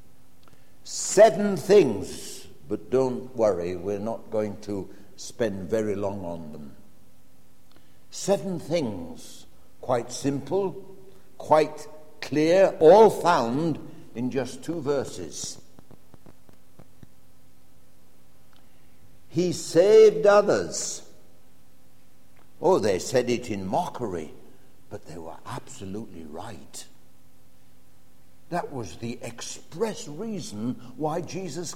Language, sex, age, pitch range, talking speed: English, male, 60-79, 105-170 Hz, 90 wpm